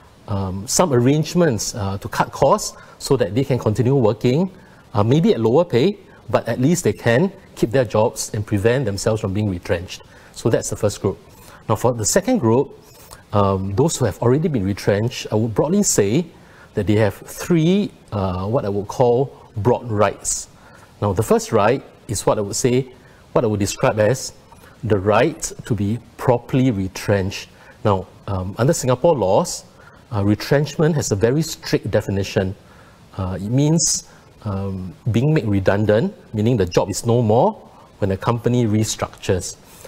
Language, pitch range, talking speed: English, 100-135 Hz, 170 wpm